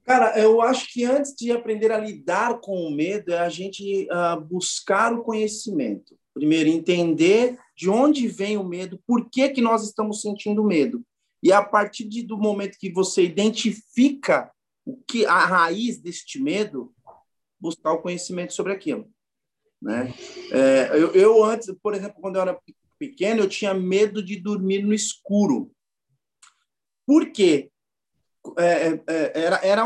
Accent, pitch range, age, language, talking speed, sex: Brazilian, 190-240 Hz, 40-59, Portuguese, 150 wpm, male